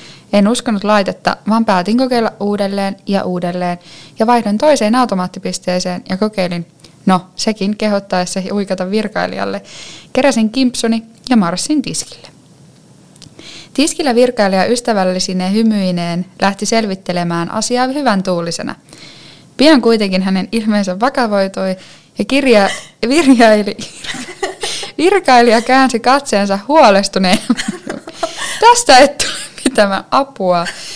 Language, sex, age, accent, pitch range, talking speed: Finnish, female, 10-29, native, 185-250 Hz, 100 wpm